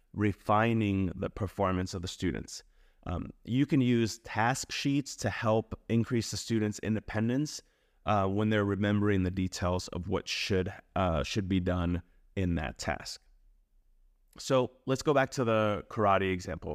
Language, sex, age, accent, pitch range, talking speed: English, male, 30-49, American, 95-120 Hz, 150 wpm